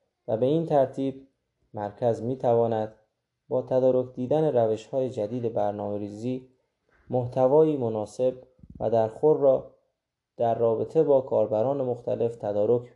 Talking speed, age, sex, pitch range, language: 115 wpm, 20-39, male, 110-135 Hz, Persian